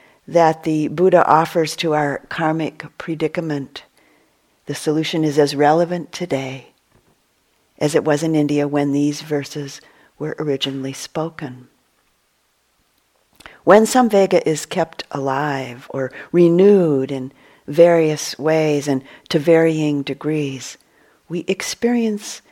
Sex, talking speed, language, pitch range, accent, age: female, 110 wpm, English, 145-170 Hz, American, 50-69